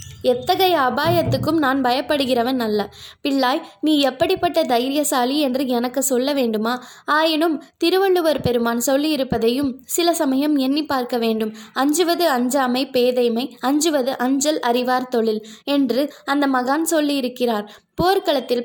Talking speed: 110 wpm